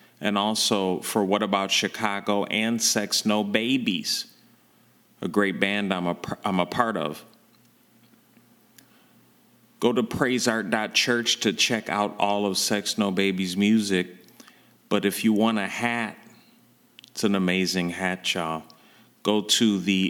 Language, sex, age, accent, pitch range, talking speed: English, male, 30-49, American, 95-110 Hz, 130 wpm